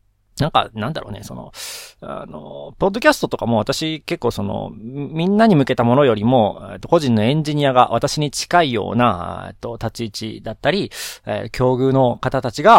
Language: Japanese